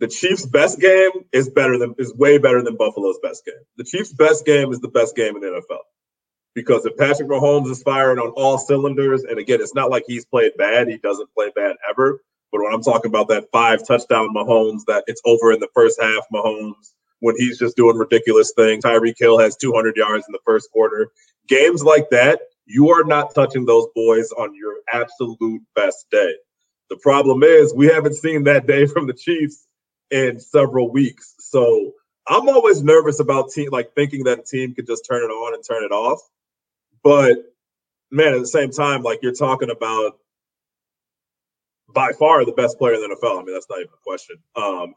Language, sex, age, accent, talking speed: English, male, 30-49, American, 205 wpm